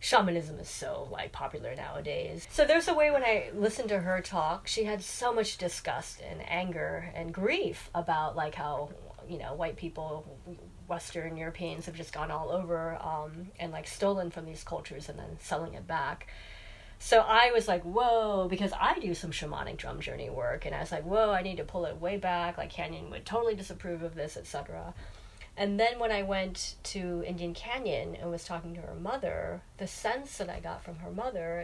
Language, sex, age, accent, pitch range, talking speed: English, female, 30-49, American, 160-200 Hz, 200 wpm